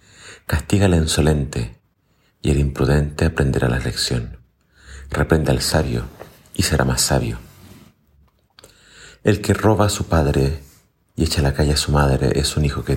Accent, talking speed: Argentinian, 155 wpm